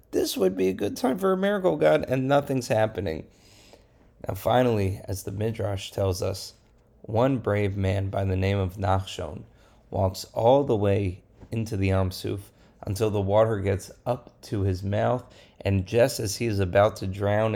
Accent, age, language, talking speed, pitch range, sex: American, 30-49, English, 180 wpm, 95-110 Hz, male